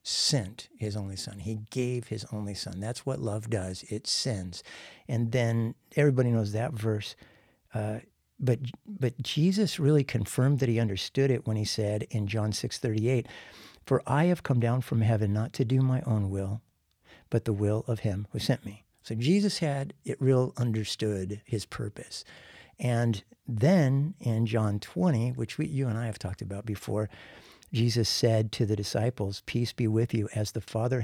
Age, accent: 60-79, American